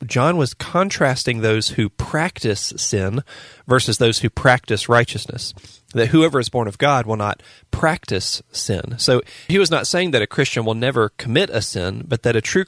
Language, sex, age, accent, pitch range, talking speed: English, male, 40-59, American, 110-130 Hz, 185 wpm